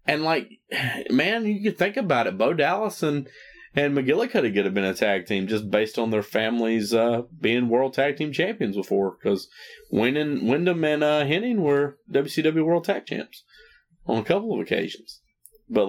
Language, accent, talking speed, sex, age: English, American, 180 wpm, male, 30-49